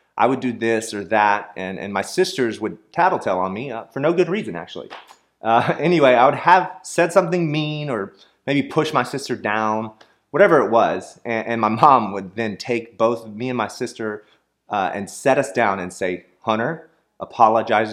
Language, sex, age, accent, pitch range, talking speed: English, male, 30-49, American, 105-155 Hz, 195 wpm